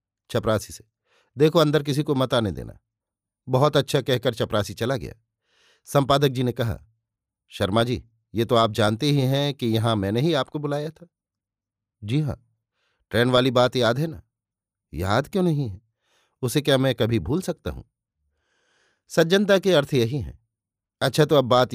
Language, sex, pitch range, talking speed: Hindi, male, 115-145 Hz, 170 wpm